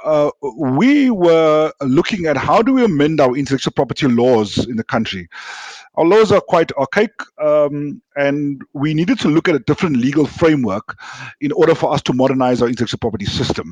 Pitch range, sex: 135-190 Hz, male